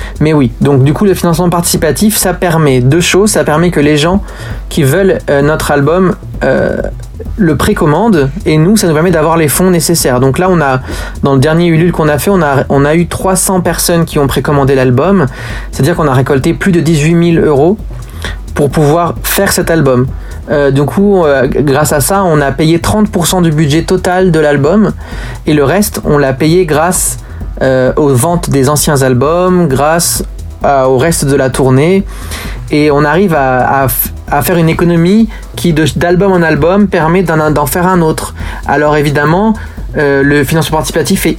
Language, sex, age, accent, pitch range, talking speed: French, male, 30-49, French, 140-180 Hz, 195 wpm